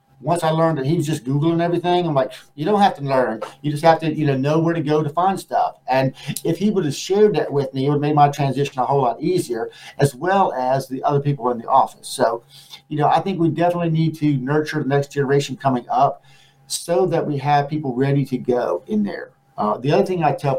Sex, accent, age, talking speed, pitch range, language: male, American, 50-69, 255 wpm, 130-155 Hz, English